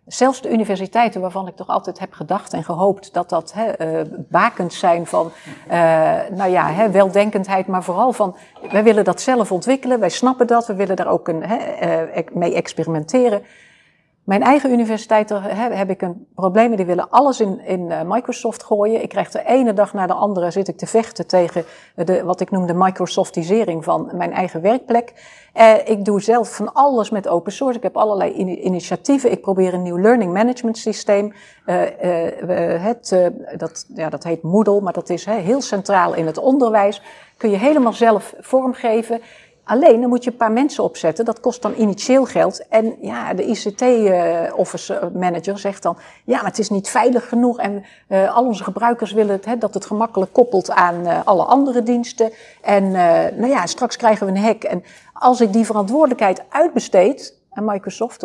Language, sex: Dutch, female